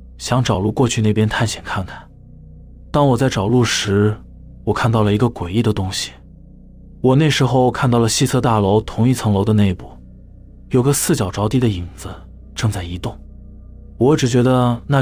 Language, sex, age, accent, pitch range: Chinese, male, 20-39, native, 90-125 Hz